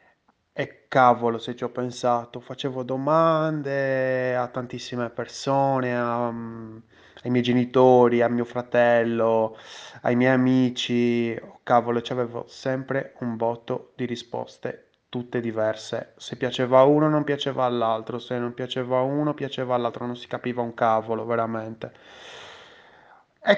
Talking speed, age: 130 wpm, 20-39